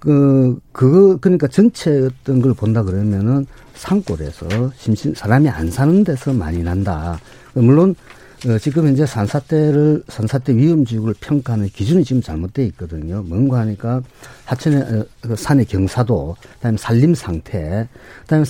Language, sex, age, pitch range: Korean, male, 50-69, 105-150 Hz